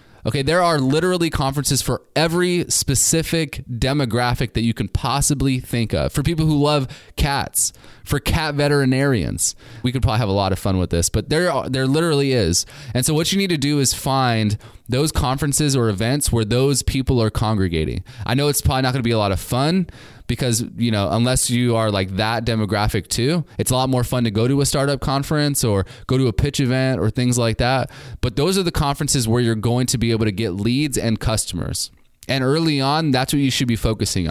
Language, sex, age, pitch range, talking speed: English, male, 20-39, 110-140 Hz, 220 wpm